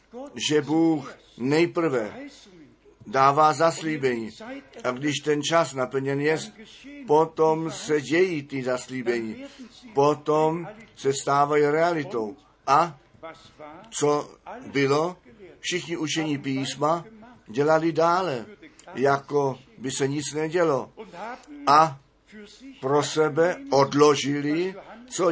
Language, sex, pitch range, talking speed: Czech, male, 140-180 Hz, 90 wpm